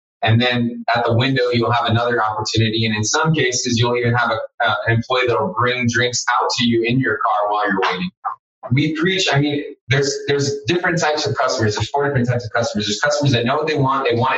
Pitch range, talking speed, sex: 115-140 Hz, 240 wpm, male